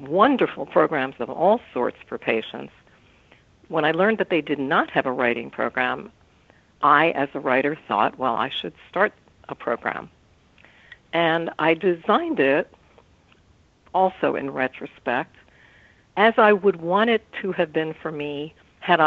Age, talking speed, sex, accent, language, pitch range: 60-79, 150 wpm, female, American, English, 140-180 Hz